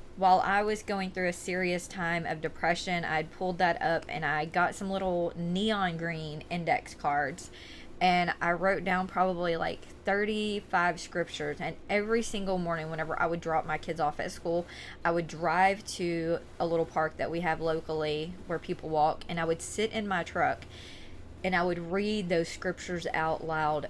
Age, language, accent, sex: 20-39, English, American, female